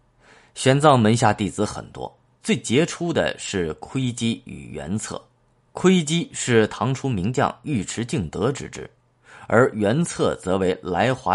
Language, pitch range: Chinese, 95-130 Hz